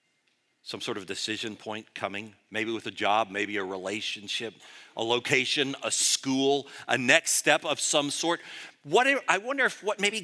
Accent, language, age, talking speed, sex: American, English, 50-69, 165 wpm, male